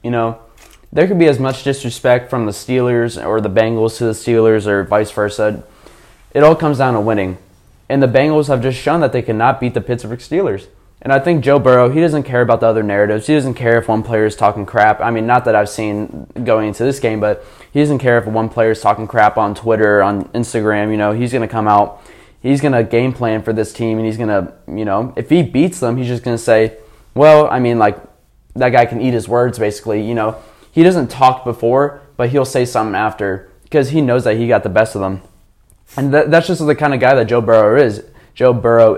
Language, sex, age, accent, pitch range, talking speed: English, male, 20-39, American, 110-135 Hz, 245 wpm